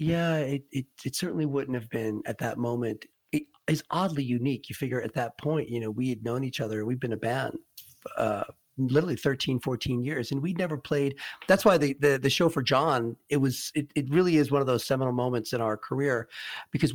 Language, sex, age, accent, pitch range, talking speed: English, male, 40-59, American, 120-150 Hz, 220 wpm